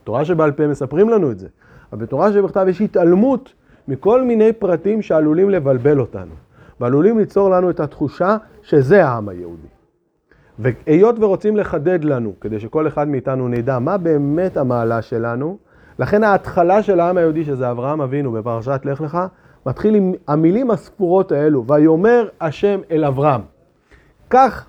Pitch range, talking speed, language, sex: 125-185 Hz, 145 wpm, Hebrew, male